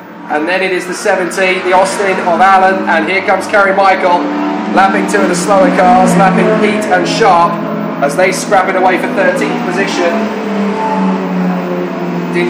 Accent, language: British, English